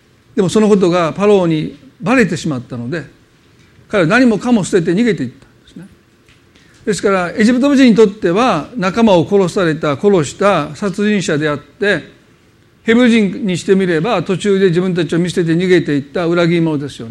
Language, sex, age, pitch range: Japanese, male, 50-69, 155-215 Hz